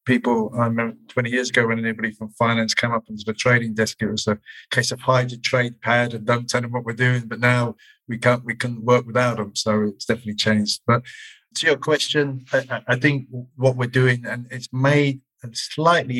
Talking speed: 215 wpm